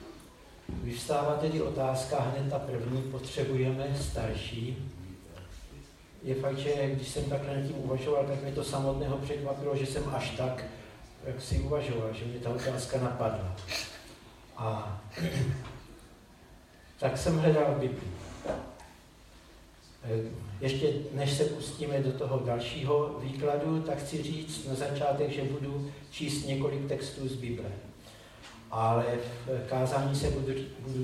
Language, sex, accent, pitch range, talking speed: Czech, male, native, 120-140 Hz, 125 wpm